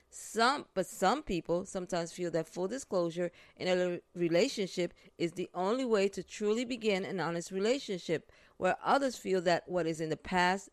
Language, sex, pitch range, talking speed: English, female, 175-220 Hz, 175 wpm